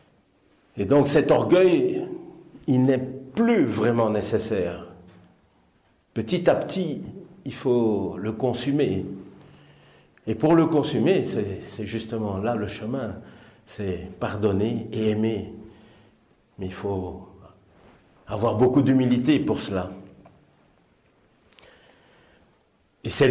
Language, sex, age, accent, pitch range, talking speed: French, male, 50-69, French, 100-130 Hz, 100 wpm